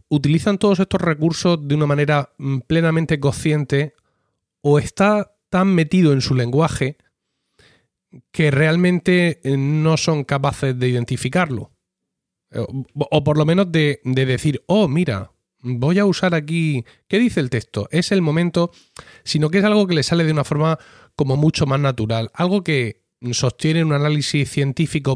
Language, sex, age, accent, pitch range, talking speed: Spanish, male, 30-49, Spanish, 130-170 Hz, 150 wpm